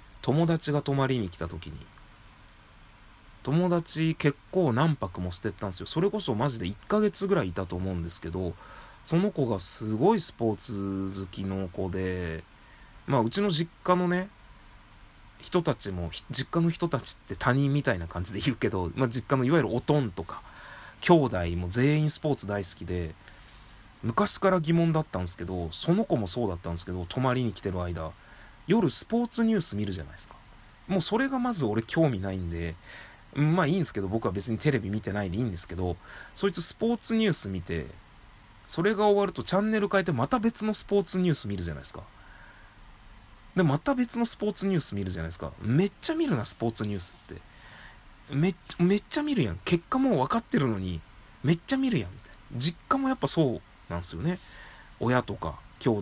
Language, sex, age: Japanese, male, 30-49